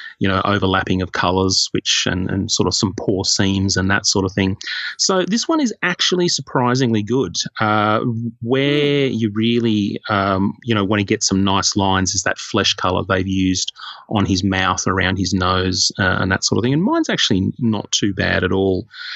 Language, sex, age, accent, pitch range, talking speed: English, male, 30-49, Australian, 95-115 Hz, 200 wpm